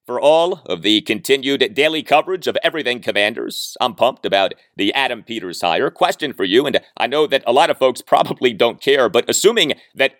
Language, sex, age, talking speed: English, male, 30-49, 200 wpm